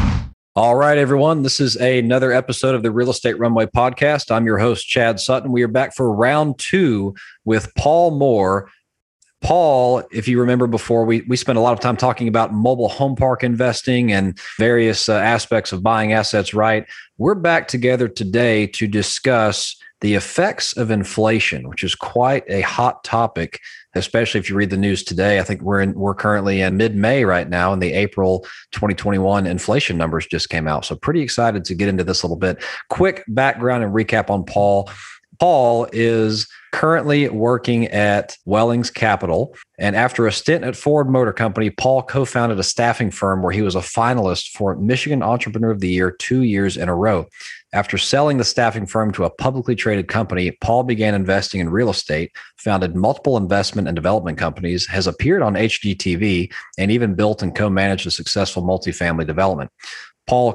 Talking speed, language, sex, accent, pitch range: 185 wpm, English, male, American, 100-125 Hz